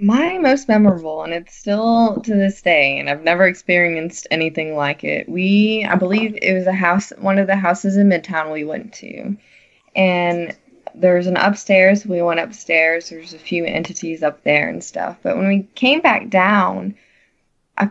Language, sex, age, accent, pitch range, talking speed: English, female, 20-39, American, 160-195 Hz, 185 wpm